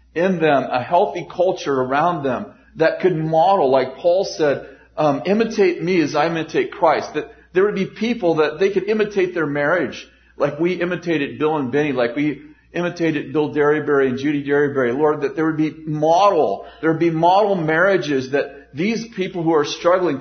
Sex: male